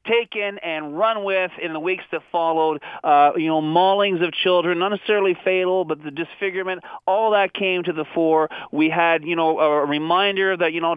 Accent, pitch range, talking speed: American, 145-185 Hz, 195 wpm